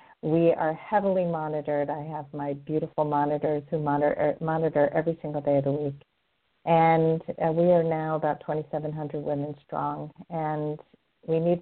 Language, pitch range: English, 150-180 Hz